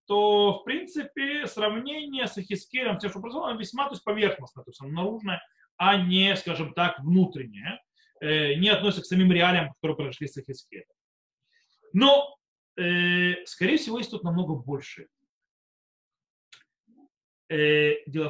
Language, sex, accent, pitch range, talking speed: Russian, male, native, 170-240 Hz, 135 wpm